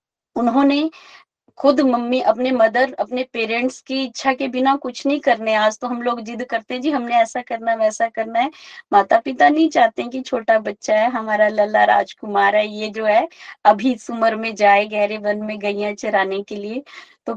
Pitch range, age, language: 225-275 Hz, 20-39, Hindi